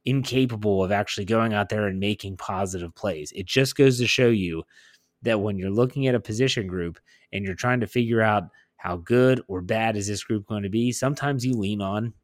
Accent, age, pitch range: American, 30-49, 95-120 Hz